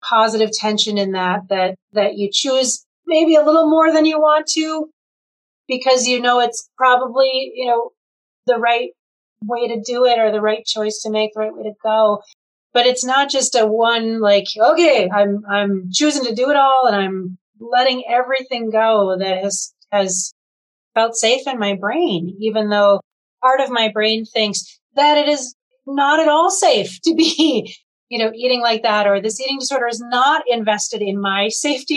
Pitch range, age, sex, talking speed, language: 195-250 Hz, 30-49, female, 185 wpm, English